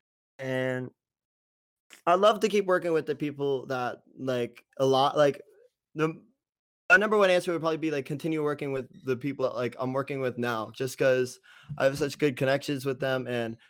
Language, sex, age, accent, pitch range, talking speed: English, male, 20-39, American, 120-140 Hz, 190 wpm